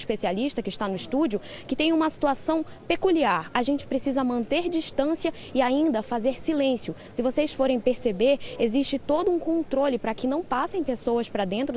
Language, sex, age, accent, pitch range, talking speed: Portuguese, female, 20-39, Brazilian, 235-290 Hz, 175 wpm